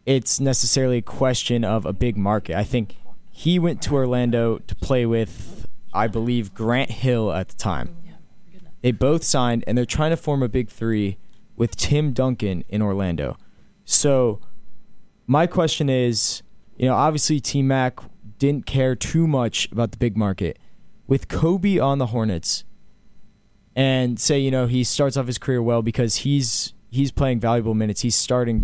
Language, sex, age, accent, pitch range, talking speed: English, male, 20-39, American, 105-135 Hz, 170 wpm